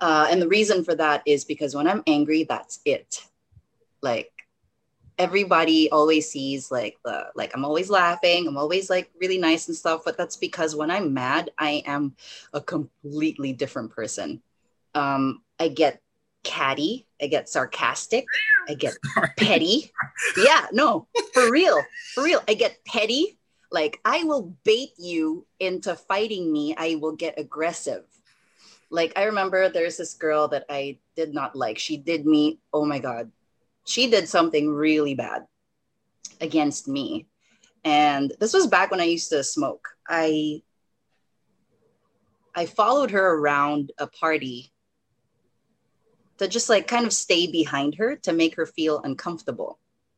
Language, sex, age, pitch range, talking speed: English, female, 30-49, 150-215 Hz, 150 wpm